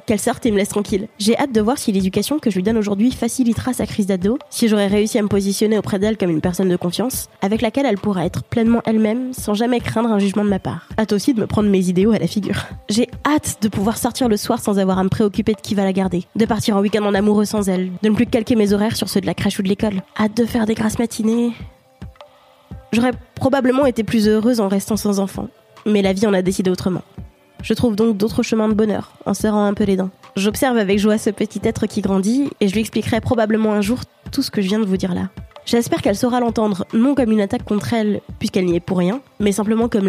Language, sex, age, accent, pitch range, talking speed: French, female, 20-39, French, 200-235 Hz, 260 wpm